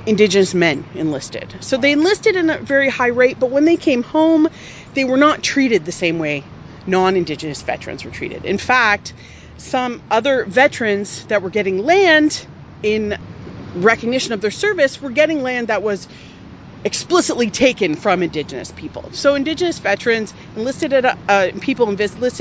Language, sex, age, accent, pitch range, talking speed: English, female, 30-49, American, 185-265 Hz, 150 wpm